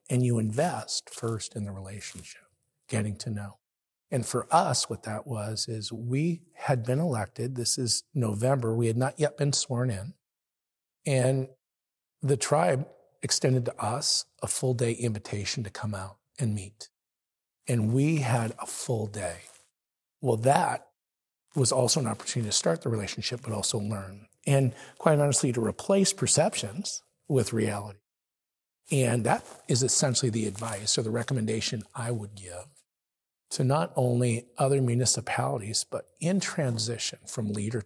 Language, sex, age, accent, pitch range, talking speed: English, male, 40-59, American, 110-135 Hz, 150 wpm